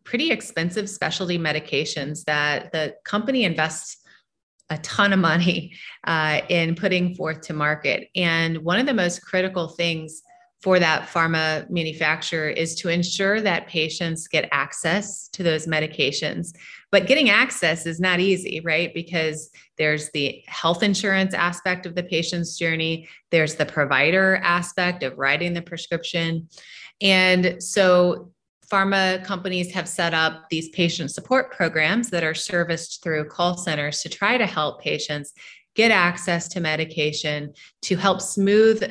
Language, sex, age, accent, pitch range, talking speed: English, female, 30-49, American, 155-185 Hz, 145 wpm